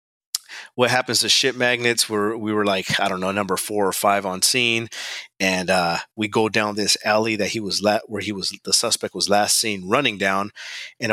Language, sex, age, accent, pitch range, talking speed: English, male, 30-49, American, 100-120 Hz, 215 wpm